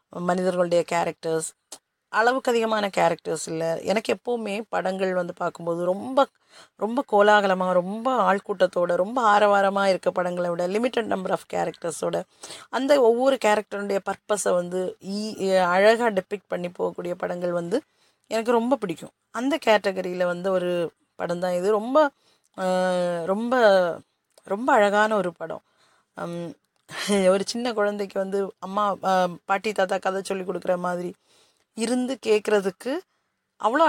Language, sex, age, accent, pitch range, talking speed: Tamil, female, 30-49, native, 175-210 Hz, 115 wpm